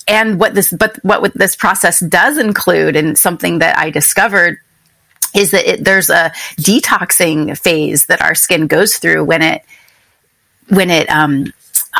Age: 30-49